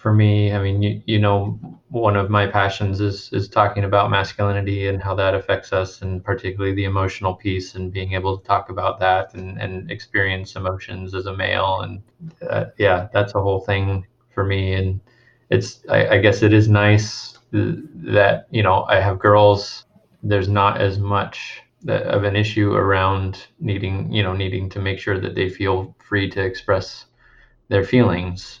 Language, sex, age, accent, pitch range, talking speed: English, male, 20-39, American, 95-105 Hz, 180 wpm